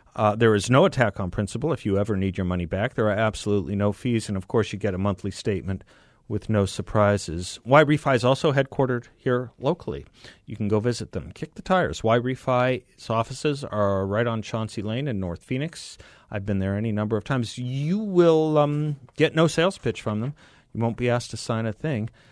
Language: English